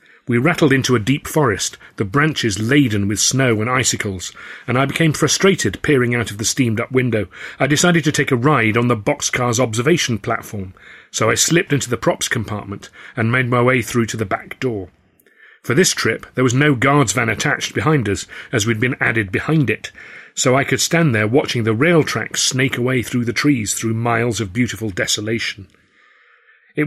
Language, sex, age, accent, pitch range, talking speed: English, male, 40-59, British, 110-135 Hz, 195 wpm